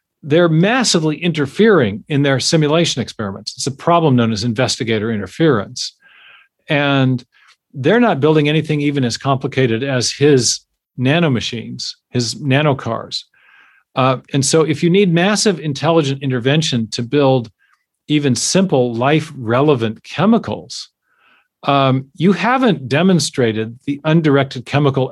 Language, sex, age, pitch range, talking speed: English, male, 40-59, 125-160 Hz, 115 wpm